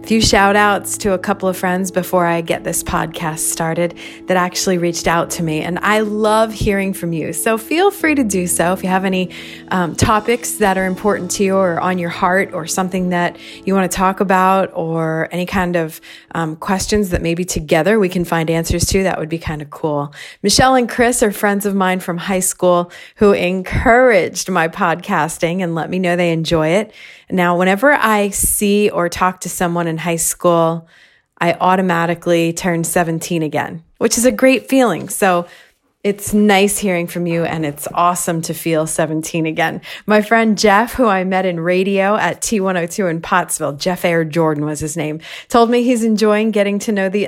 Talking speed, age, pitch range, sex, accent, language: 200 wpm, 30-49, 170-205 Hz, female, American, English